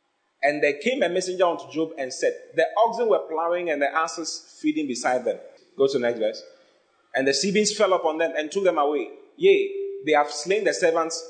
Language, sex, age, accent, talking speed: English, male, 30-49, Nigerian, 220 wpm